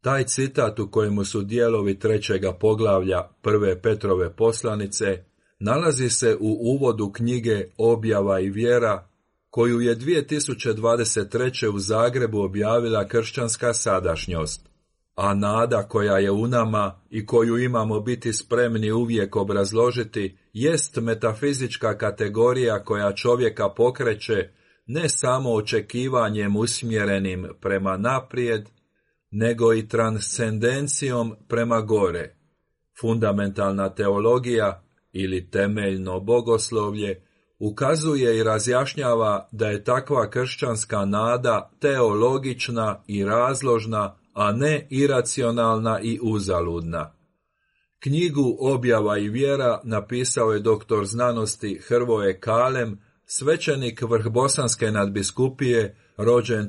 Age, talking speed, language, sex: 40-59, 95 wpm, Croatian, male